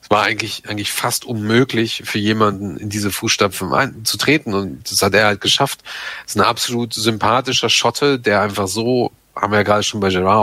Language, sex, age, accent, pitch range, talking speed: German, male, 40-59, German, 100-125 Hz, 200 wpm